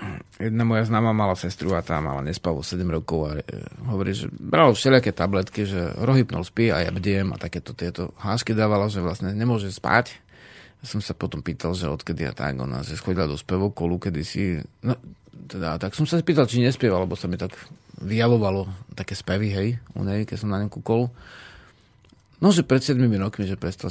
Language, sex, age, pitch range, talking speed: Slovak, male, 40-59, 95-125 Hz, 195 wpm